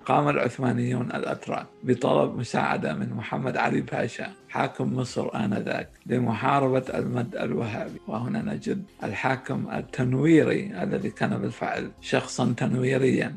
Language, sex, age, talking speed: Arabic, male, 60-79, 110 wpm